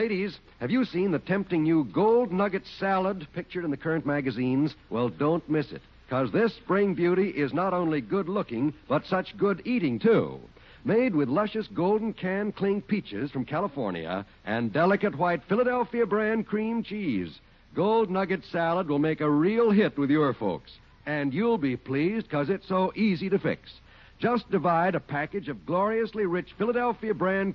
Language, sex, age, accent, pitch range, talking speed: English, male, 60-79, American, 145-205 Hz, 165 wpm